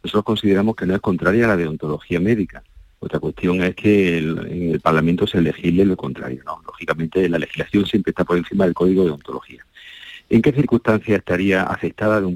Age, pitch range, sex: 50-69, 85-110 Hz, male